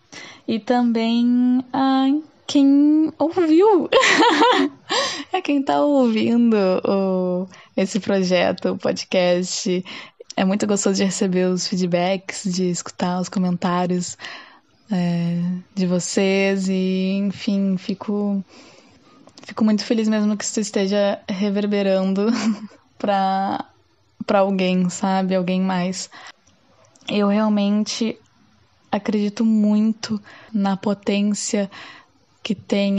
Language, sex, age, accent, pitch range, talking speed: Portuguese, female, 10-29, Brazilian, 195-235 Hz, 95 wpm